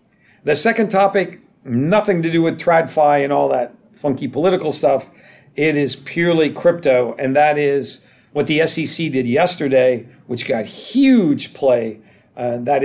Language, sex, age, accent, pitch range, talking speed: English, male, 50-69, American, 125-160 Hz, 150 wpm